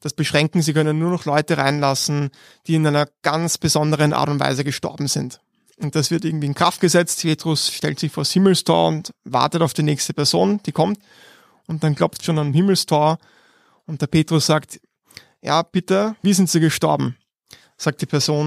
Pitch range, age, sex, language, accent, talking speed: 150-175 Hz, 20-39, male, German, German, 190 wpm